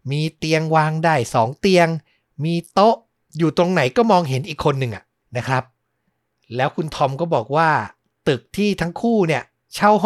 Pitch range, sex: 130-175 Hz, male